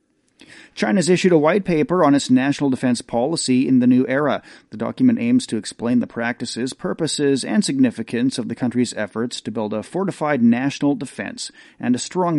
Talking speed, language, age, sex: 180 wpm, English, 40-59, male